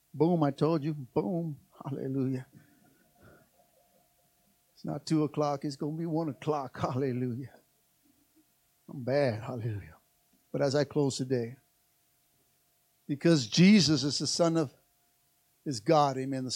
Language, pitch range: English, 140-170 Hz